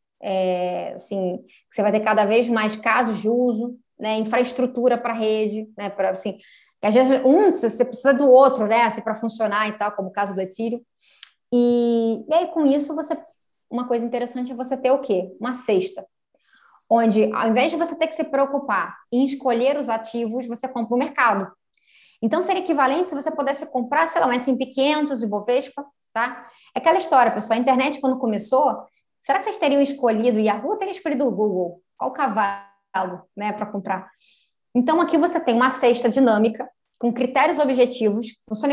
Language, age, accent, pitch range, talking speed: Portuguese, 20-39, Brazilian, 215-265 Hz, 190 wpm